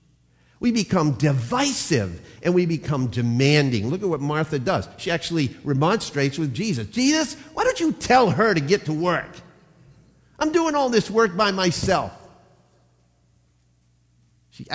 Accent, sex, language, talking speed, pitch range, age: American, male, English, 140 wpm, 95-155 Hz, 50-69